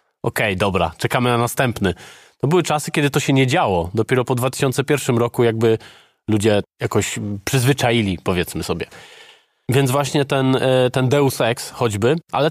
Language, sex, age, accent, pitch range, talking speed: Polish, male, 20-39, native, 120-140 Hz, 155 wpm